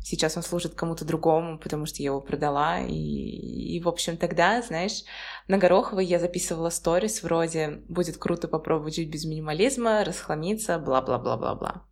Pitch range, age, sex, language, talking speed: 165-200 Hz, 20-39, female, Russian, 150 wpm